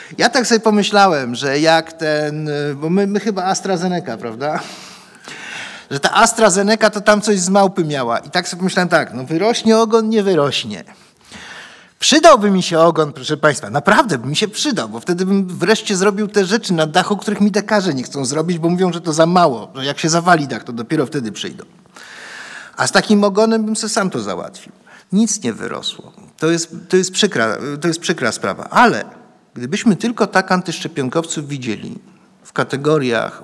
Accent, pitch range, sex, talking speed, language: native, 145-205 Hz, male, 185 wpm, Polish